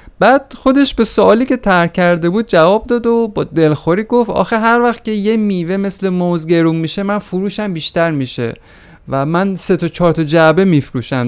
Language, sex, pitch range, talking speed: Persian, male, 135-195 Hz, 190 wpm